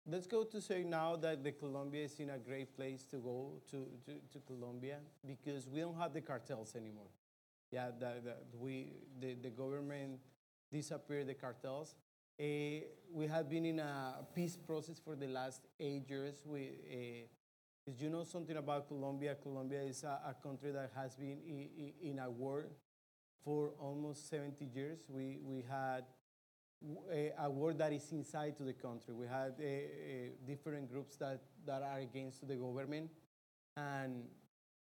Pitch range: 135-155 Hz